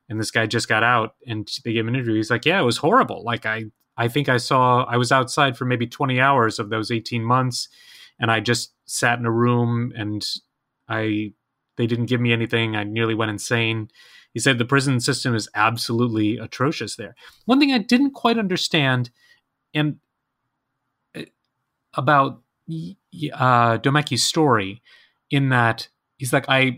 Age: 30-49